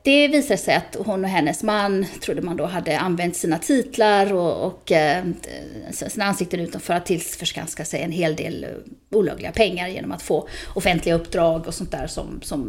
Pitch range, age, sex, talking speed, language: 170-240 Hz, 30-49, female, 190 wpm, Swedish